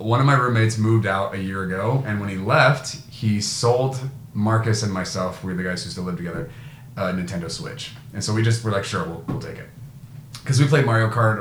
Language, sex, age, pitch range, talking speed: English, male, 30-49, 105-135 Hz, 230 wpm